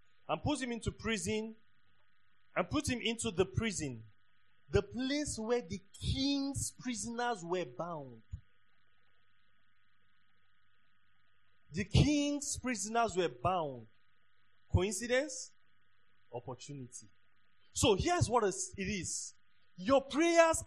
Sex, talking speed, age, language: male, 95 wpm, 30-49, English